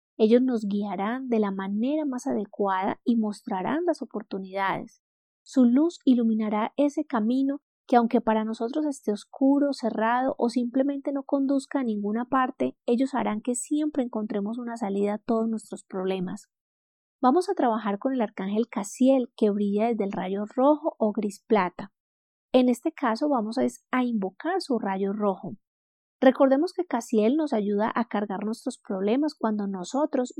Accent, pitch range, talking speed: Colombian, 210-270 Hz, 155 wpm